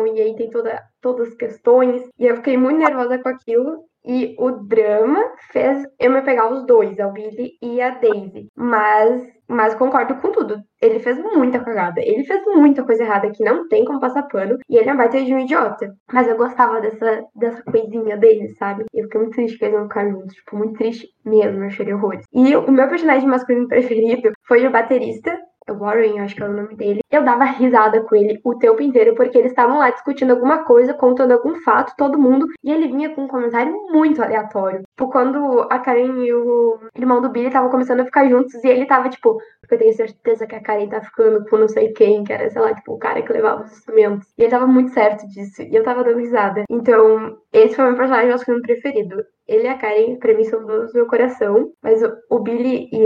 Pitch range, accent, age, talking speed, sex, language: 220-275 Hz, Brazilian, 10-29, 230 wpm, female, Portuguese